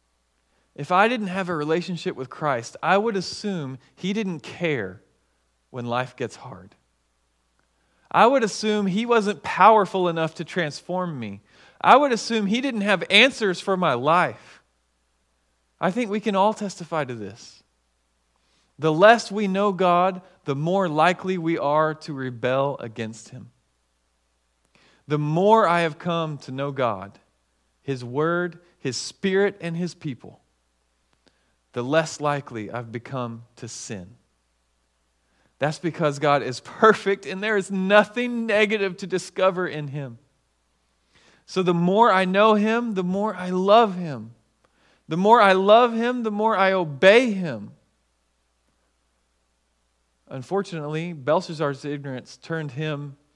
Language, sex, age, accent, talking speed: English, male, 40-59, American, 135 wpm